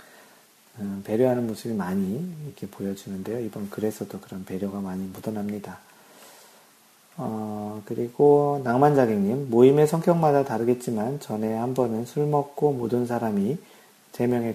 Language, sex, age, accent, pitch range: Korean, male, 40-59, native, 105-135 Hz